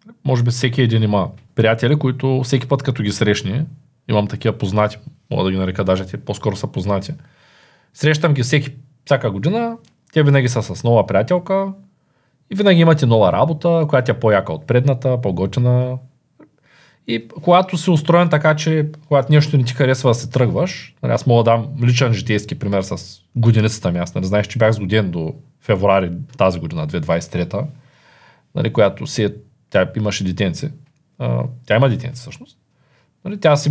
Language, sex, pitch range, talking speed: Bulgarian, male, 115-150 Hz, 165 wpm